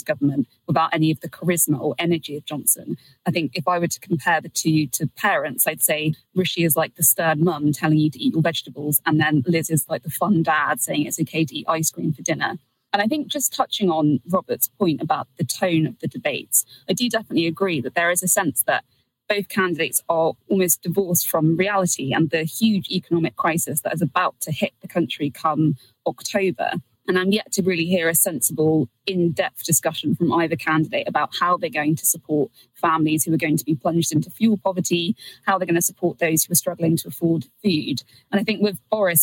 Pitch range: 155-180 Hz